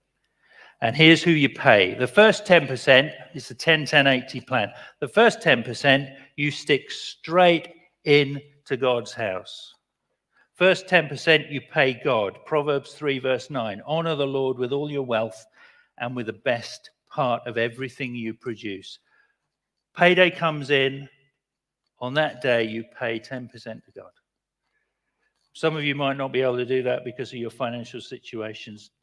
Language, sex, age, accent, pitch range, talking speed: English, male, 50-69, British, 120-145 Hz, 150 wpm